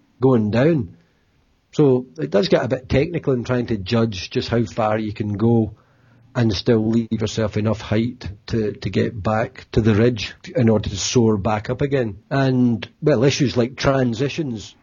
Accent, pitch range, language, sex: British, 110-125 Hz, English, male